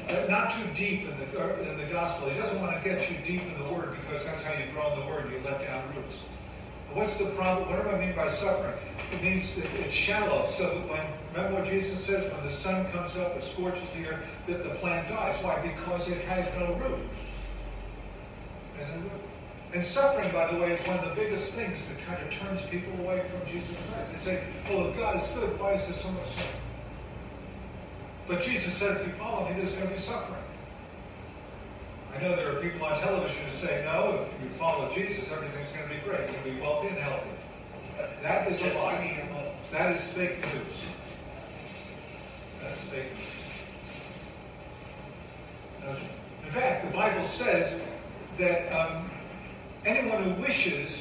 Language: English